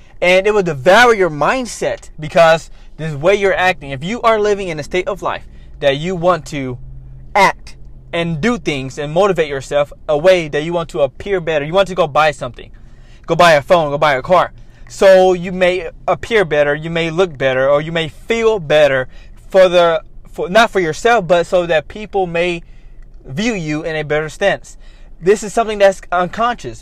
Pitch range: 145-195 Hz